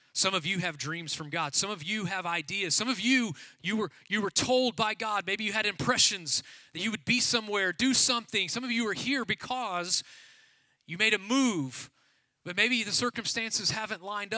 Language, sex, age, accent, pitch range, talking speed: English, male, 30-49, American, 140-220 Hz, 205 wpm